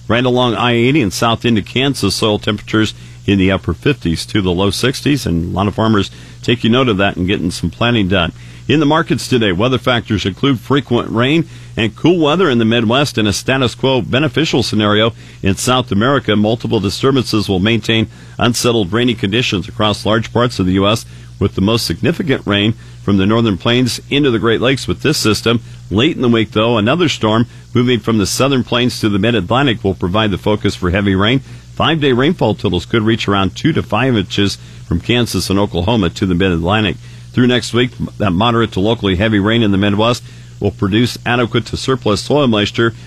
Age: 50-69